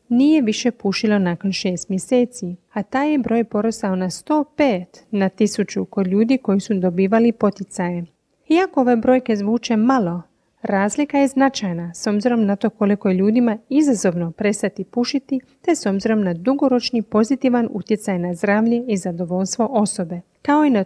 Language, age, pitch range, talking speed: Croatian, 30-49, 195-240 Hz, 155 wpm